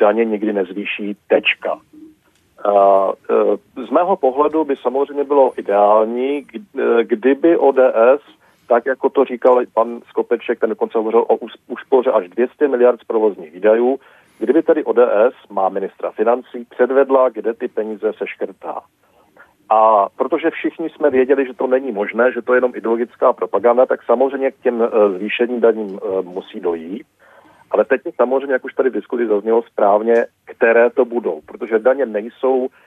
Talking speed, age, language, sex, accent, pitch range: 145 wpm, 40-59, Czech, male, native, 110-140 Hz